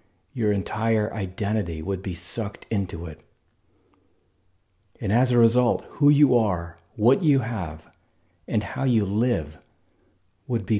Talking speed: 135 wpm